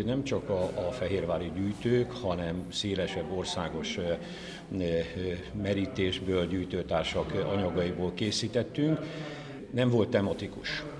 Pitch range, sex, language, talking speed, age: 95-110 Hz, male, Hungarian, 105 wpm, 60-79